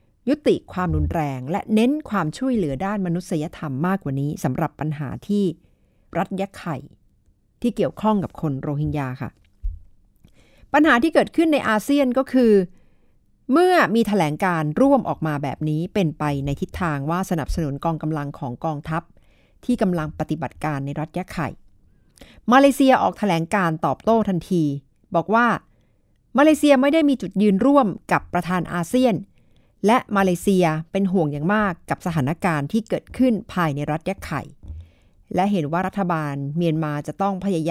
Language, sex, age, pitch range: Thai, female, 60-79, 150-200 Hz